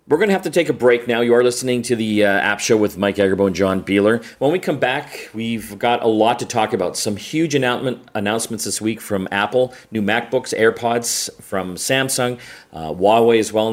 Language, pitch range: English, 95-120 Hz